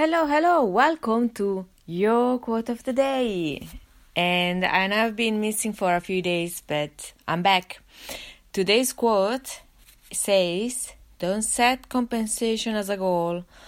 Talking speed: 130 wpm